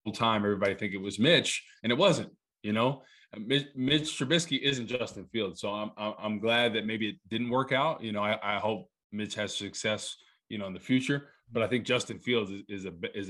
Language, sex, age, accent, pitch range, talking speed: English, male, 20-39, American, 100-120 Hz, 220 wpm